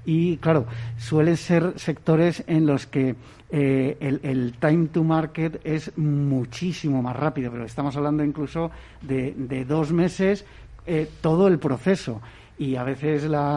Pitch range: 135-160 Hz